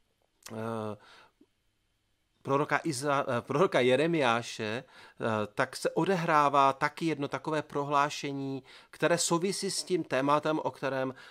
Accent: native